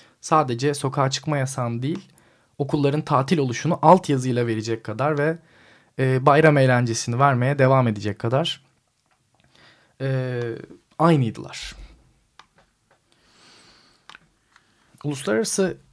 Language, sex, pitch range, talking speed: Turkish, male, 125-160 Hz, 85 wpm